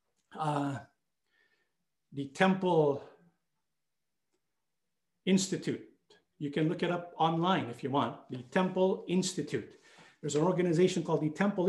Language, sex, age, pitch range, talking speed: English, male, 50-69, 165-220 Hz, 115 wpm